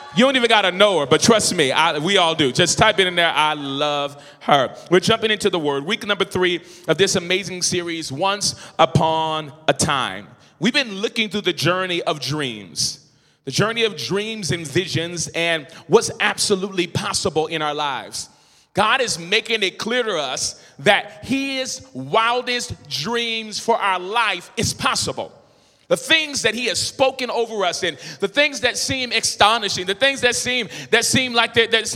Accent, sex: American, male